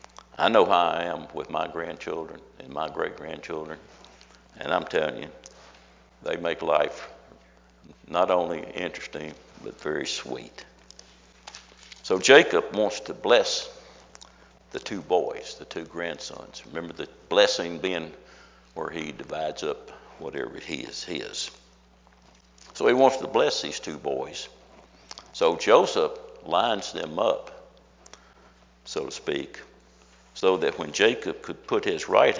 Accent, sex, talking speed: American, male, 130 wpm